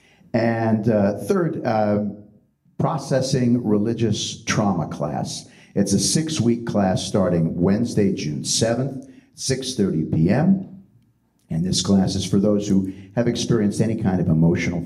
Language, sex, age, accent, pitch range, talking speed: English, male, 50-69, American, 80-115 Hz, 130 wpm